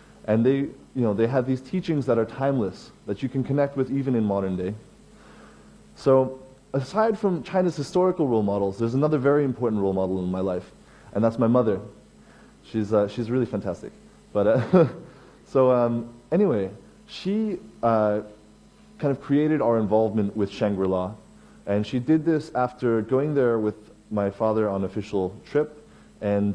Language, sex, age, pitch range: Chinese, male, 20-39, 105-135 Hz